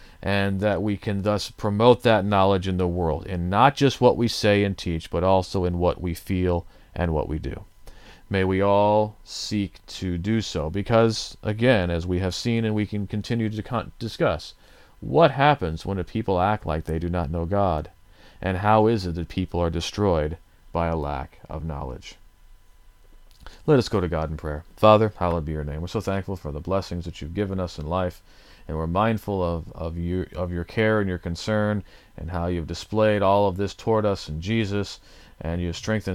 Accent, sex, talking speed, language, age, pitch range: American, male, 200 wpm, English, 40-59, 85-105 Hz